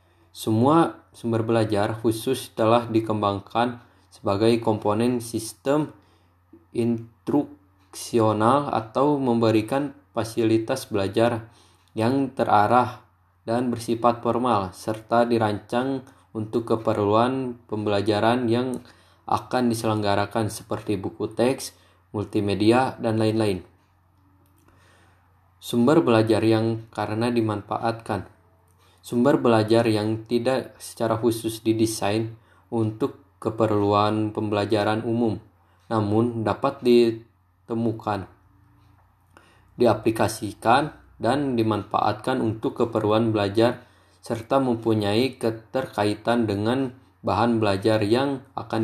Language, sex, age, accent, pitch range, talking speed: Indonesian, male, 20-39, native, 100-115 Hz, 80 wpm